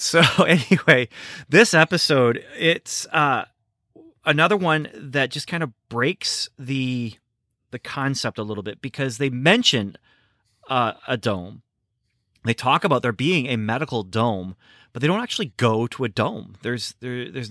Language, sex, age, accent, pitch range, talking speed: English, male, 30-49, American, 110-135 Hz, 150 wpm